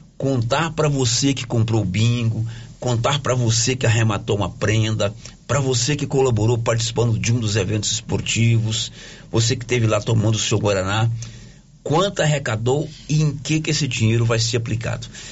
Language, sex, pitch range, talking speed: Portuguese, male, 110-135 Hz, 165 wpm